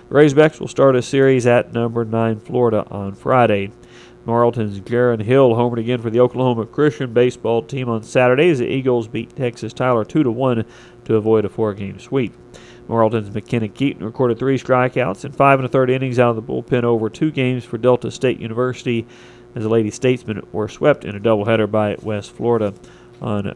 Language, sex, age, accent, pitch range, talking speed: English, male, 40-59, American, 115-130 Hz, 190 wpm